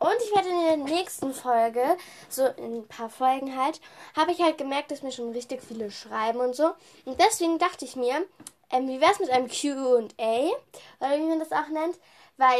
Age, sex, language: 10-29, female, German